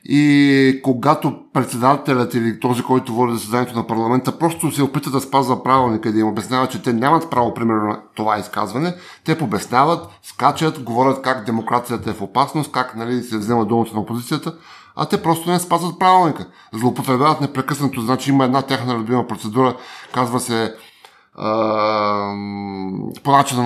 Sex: male